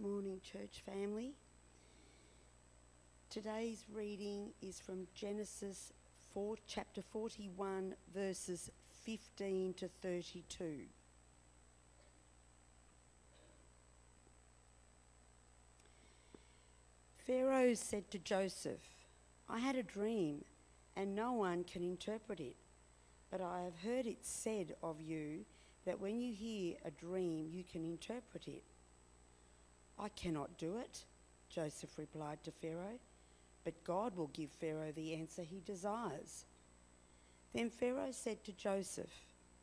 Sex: female